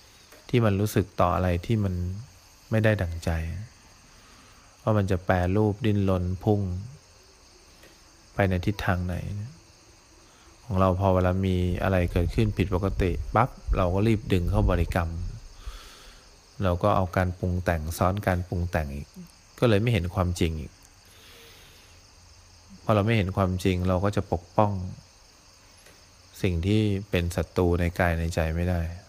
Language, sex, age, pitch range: English, male, 20-39, 90-100 Hz